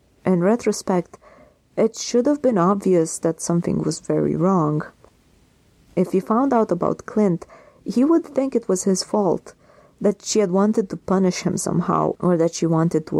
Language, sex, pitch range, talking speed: English, female, 165-220 Hz, 175 wpm